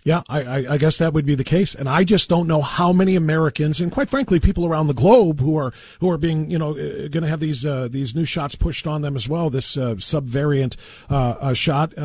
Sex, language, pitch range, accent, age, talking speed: male, English, 125-160 Hz, American, 40-59, 240 wpm